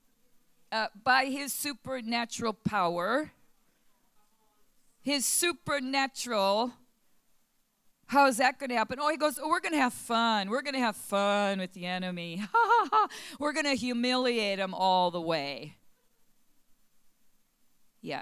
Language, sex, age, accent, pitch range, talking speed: English, female, 40-59, American, 215-270 Hz, 130 wpm